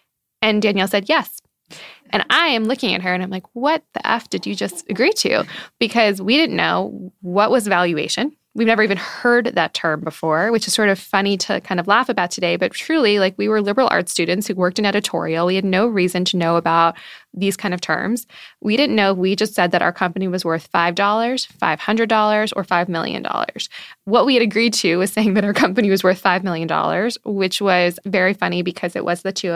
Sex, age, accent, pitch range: female, 20-39, American, 175-215 Hz